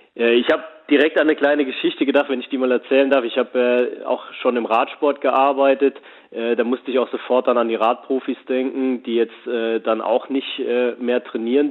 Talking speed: 210 wpm